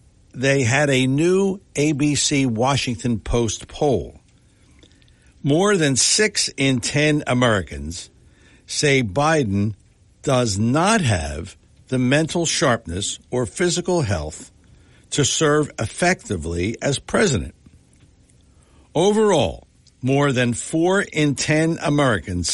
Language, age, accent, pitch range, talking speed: English, 60-79, American, 95-155 Hz, 100 wpm